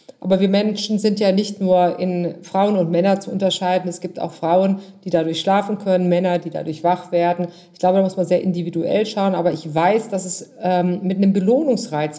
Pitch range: 170-190 Hz